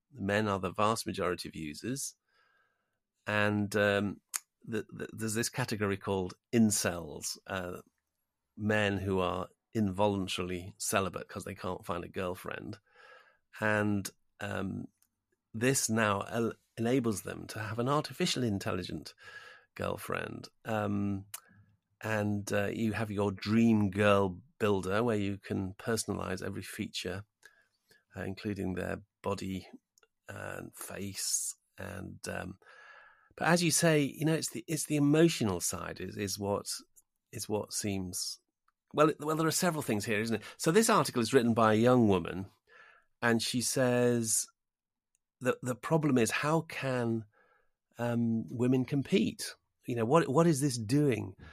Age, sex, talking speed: 40-59, male, 135 wpm